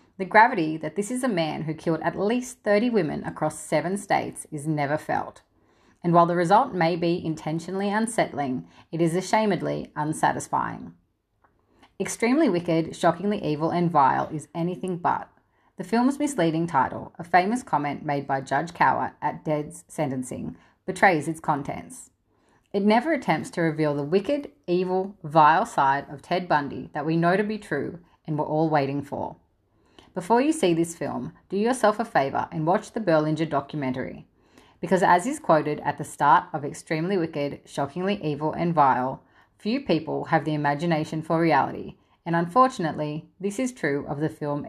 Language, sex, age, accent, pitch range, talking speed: English, female, 30-49, Australian, 145-185 Hz, 165 wpm